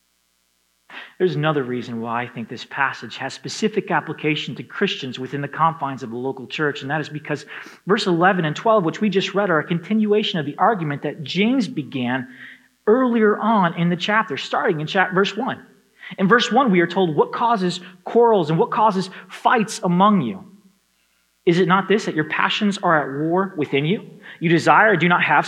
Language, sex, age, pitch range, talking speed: English, male, 30-49, 135-200 Hz, 195 wpm